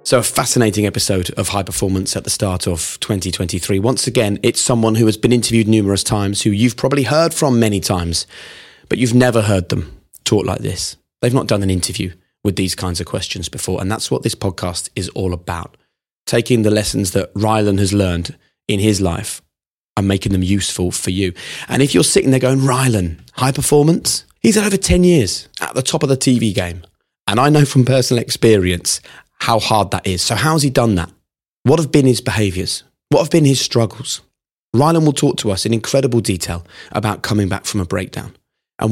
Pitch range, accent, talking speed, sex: 95-125 Hz, British, 205 wpm, male